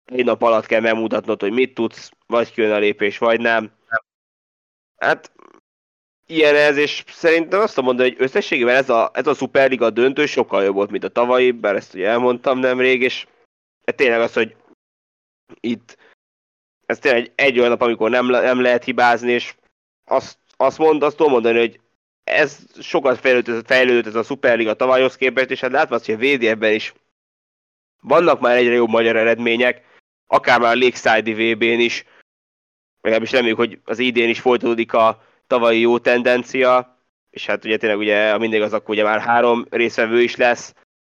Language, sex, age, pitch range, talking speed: Hungarian, male, 20-39, 110-125 Hz, 180 wpm